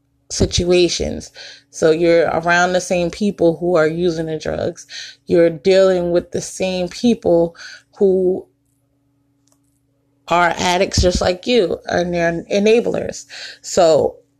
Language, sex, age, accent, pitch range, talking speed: English, female, 20-39, American, 155-190 Hz, 115 wpm